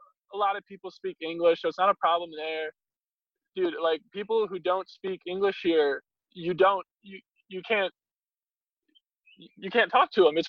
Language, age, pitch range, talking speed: English, 20-39, 165-225 Hz, 175 wpm